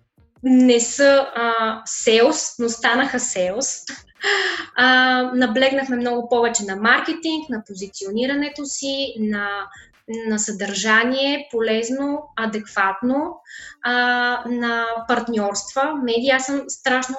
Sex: female